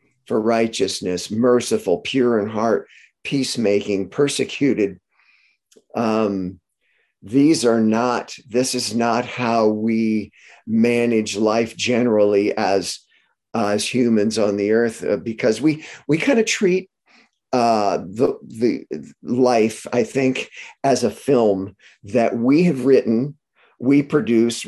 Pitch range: 105-130 Hz